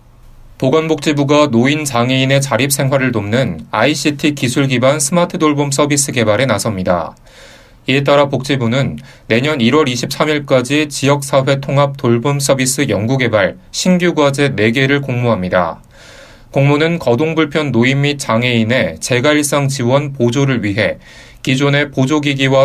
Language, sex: Korean, male